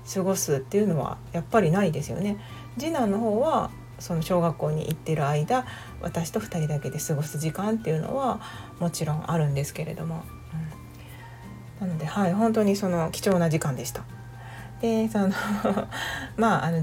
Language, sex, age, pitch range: Japanese, female, 40-59, 135-175 Hz